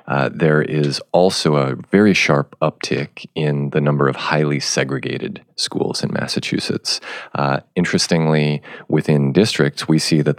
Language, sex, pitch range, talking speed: English, male, 70-75 Hz, 140 wpm